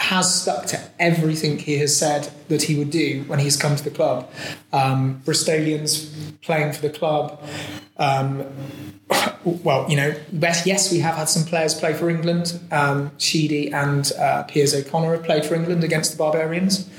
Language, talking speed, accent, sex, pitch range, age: English, 175 wpm, British, male, 145-165 Hz, 30-49